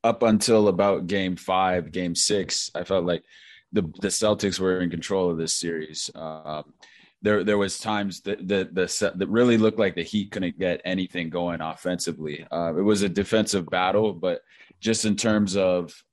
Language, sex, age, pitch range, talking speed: English, male, 20-39, 85-100 Hz, 185 wpm